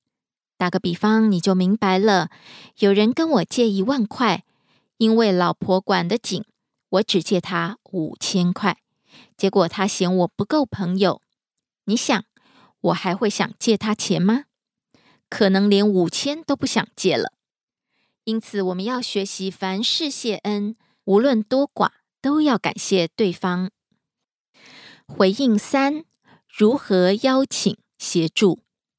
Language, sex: Korean, female